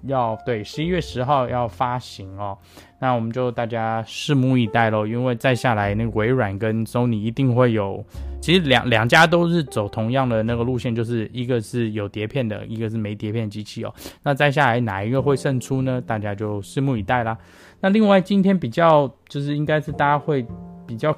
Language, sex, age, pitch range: Chinese, male, 20-39, 110-130 Hz